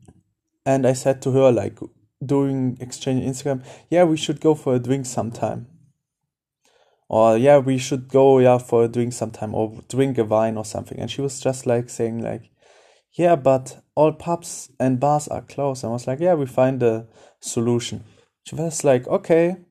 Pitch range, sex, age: 125-150 Hz, male, 20-39